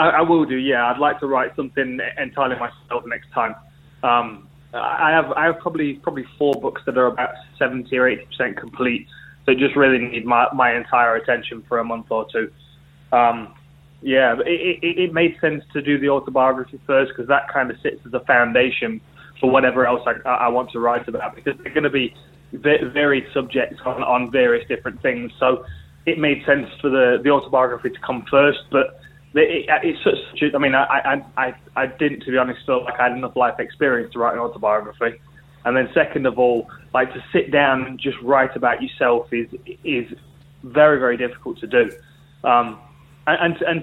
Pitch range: 125-145 Hz